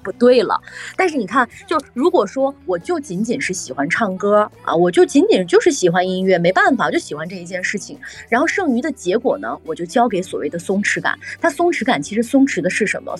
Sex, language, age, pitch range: female, Chinese, 20-39, 185-270 Hz